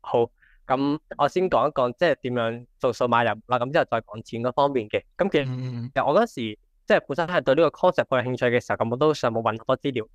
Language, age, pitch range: Chinese, 20-39, 120-145 Hz